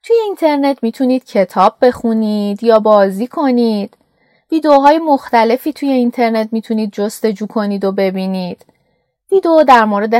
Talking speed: 120 wpm